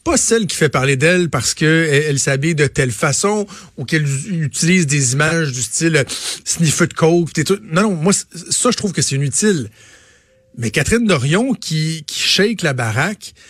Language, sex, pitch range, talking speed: French, male, 140-180 Hz, 175 wpm